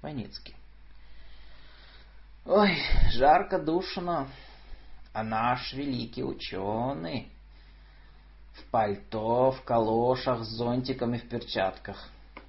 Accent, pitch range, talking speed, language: native, 75-125 Hz, 75 wpm, Russian